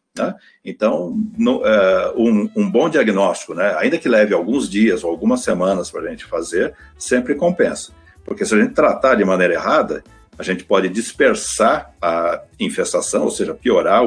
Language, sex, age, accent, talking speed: Portuguese, male, 60-79, Brazilian, 170 wpm